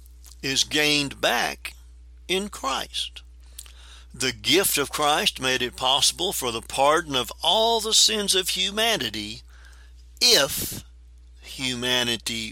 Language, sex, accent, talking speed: English, male, American, 110 wpm